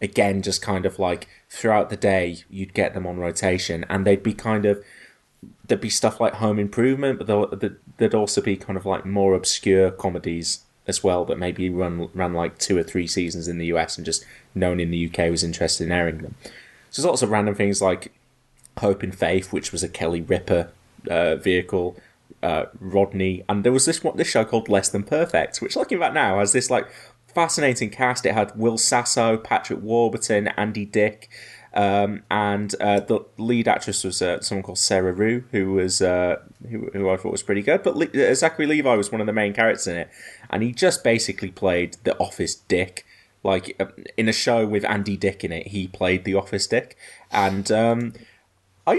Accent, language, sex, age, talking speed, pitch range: British, English, male, 20-39, 205 wpm, 95-110 Hz